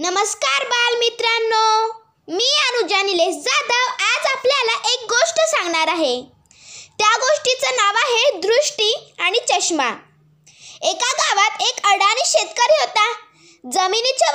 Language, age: Marathi, 20-39